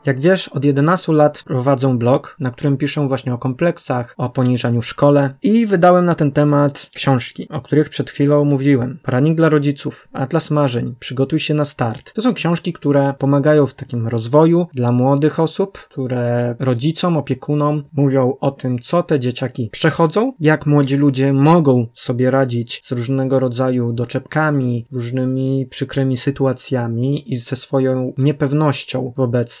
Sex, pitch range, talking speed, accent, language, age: male, 130-155 Hz, 155 wpm, native, Polish, 20-39